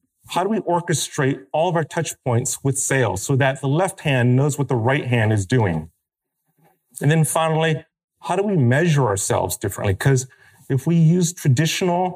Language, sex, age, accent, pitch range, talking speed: English, male, 30-49, American, 125-155 Hz, 185 wpm